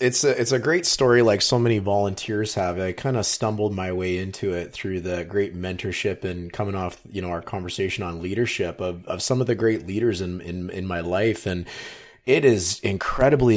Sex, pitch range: male, 90-115 Hz